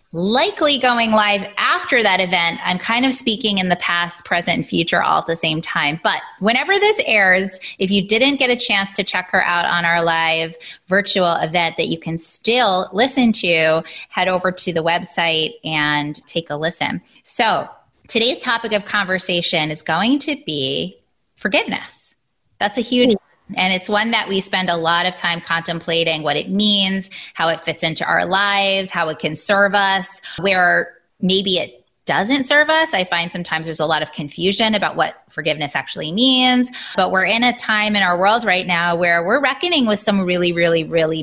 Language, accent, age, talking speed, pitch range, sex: English, American, 20-39, 190 wpm, 170-225 Hz, female